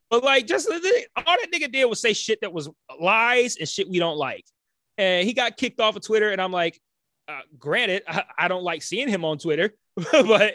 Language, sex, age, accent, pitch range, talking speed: English, male, 20-39, American, 160-220 Hz, 220 wpm